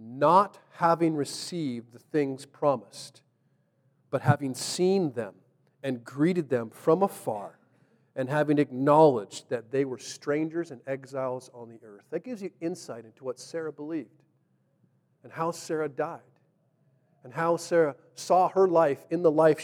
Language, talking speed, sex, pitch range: English, 145 wpm, male, 135-170 Hz